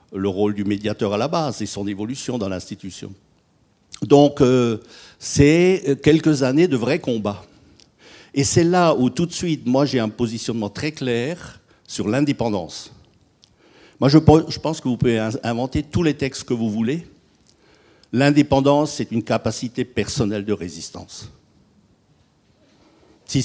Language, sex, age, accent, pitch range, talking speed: French, male, 60-79, French, 115-150 Hz, 145 wpm